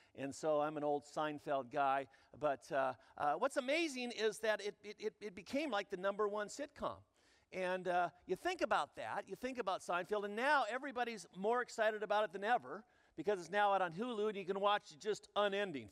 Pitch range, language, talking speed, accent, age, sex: 190-265 Hz, English, 205 wpm, American, 50-69, male